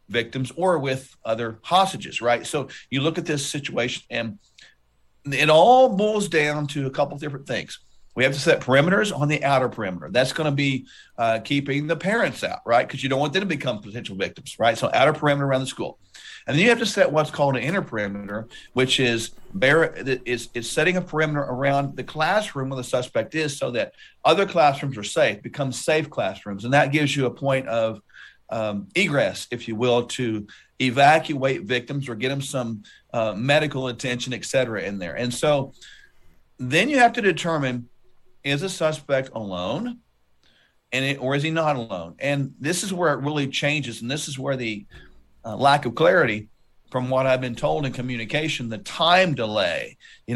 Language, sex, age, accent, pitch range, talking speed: English, male, 50-69, American, 120-150 Hz, 195 wpm